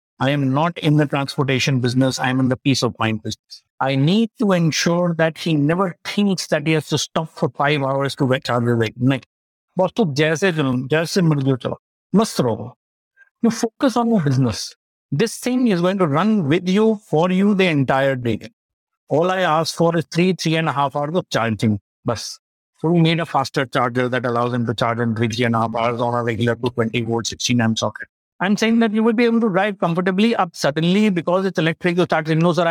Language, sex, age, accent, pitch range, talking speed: English, male, 60-79, Indian, 130-180 Hz, 205 wpm